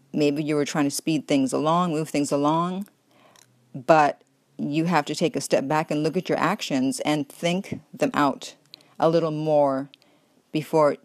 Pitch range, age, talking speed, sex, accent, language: 150-185 Hz, 40-59, 175 wpm, female, American, English